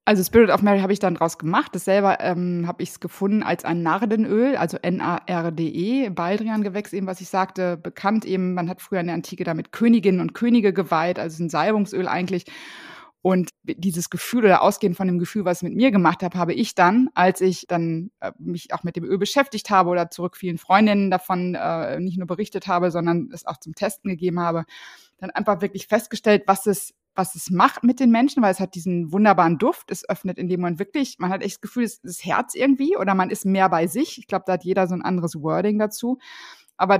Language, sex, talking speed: German, female, 220 wpm